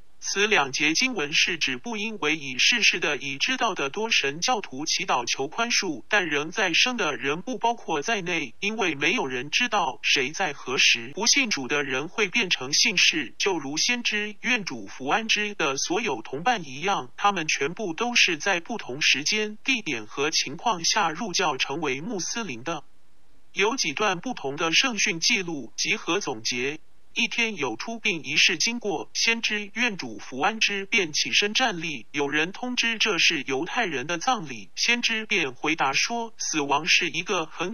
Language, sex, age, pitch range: Chinese, male, 50-69, 165-235 Hz